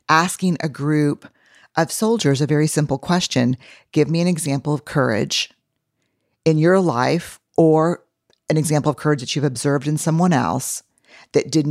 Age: 40-59